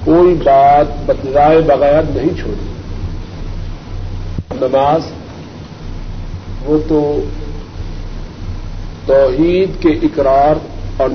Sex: male